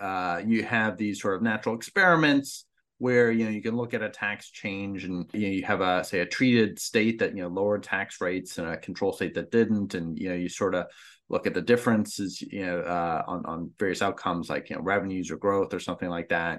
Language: English